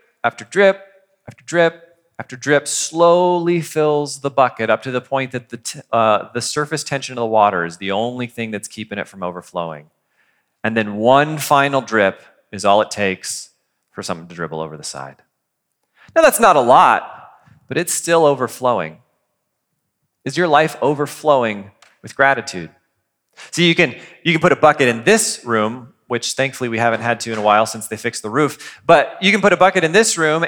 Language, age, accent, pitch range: English, 30-49, American, 120-175 Hz